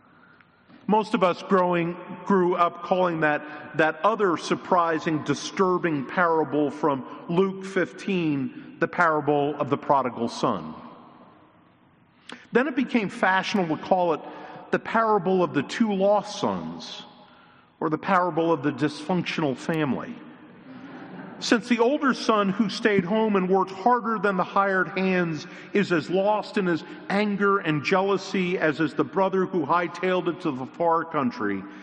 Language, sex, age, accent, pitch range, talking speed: English, male, 50-69, American, 160-200 Hz, 145 wpm